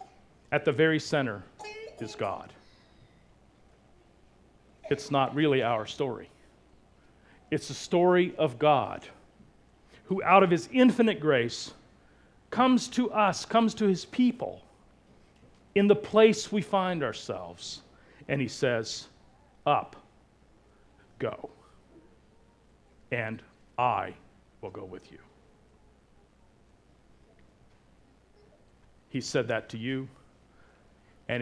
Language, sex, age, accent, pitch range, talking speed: English, male, 50-69, American, 120-180 Hz, 100 wpm